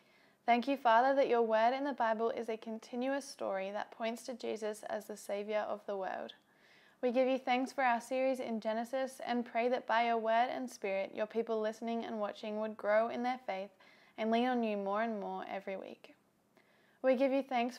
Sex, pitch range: female, 215-250 Hz